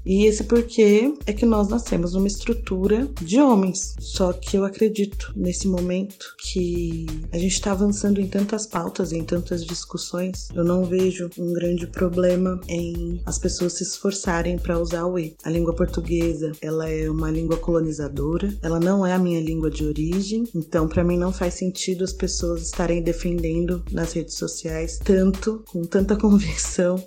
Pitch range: 165-190 Hz